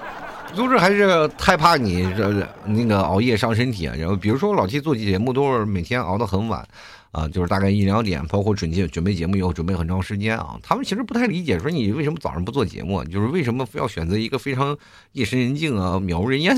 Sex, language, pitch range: male, Chinese, 90-130 Hz